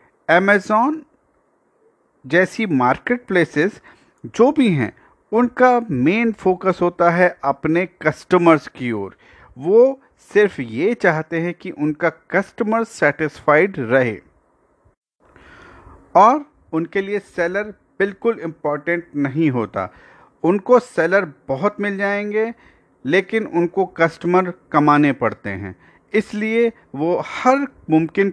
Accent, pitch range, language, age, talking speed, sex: native, 155-205 Hz, Hindi, 50-69, 105 wpm, male